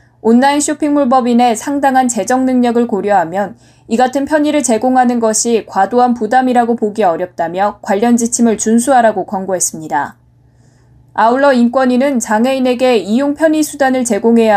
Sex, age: female, 10-29